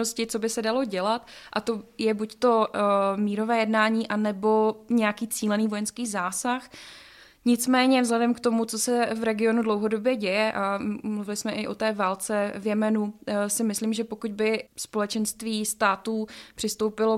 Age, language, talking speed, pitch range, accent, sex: 20-39, Czech, 155 wpm, 210-225 Hz, native, female